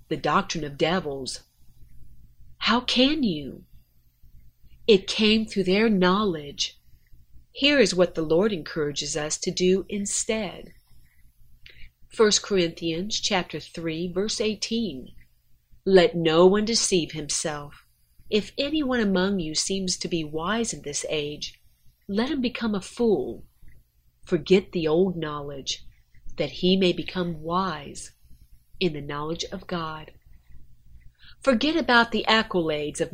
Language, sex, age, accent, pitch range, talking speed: English, female, 40-59, American, 150-205 Hz, 125 wpm